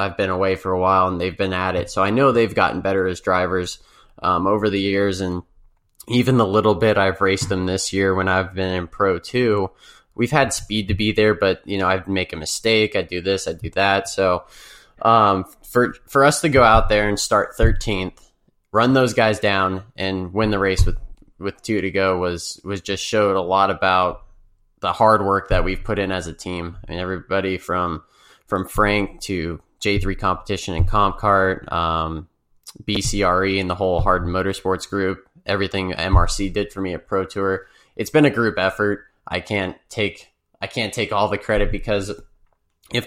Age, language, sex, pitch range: 20-39, English, male, 90-105 Hz